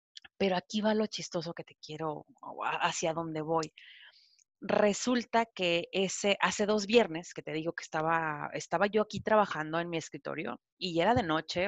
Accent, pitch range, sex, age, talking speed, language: Mexican, 155-195 Hz, female, 30-49, 180 wpm, Spanish